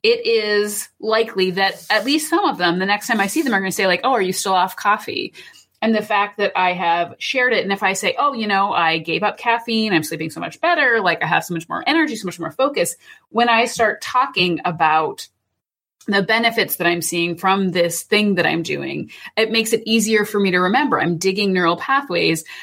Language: English